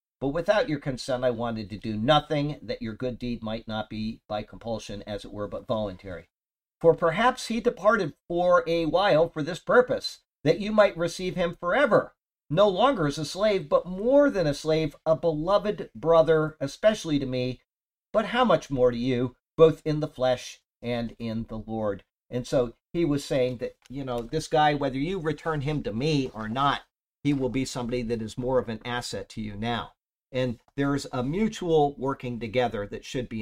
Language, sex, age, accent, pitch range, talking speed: English, male, 50-69, American, 110-155 Hz, 195 wpm